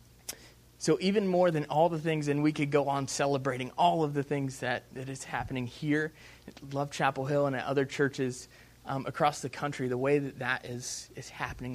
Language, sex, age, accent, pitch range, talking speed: English, male, 20-39, American, 125-150 Hz, 210 wpm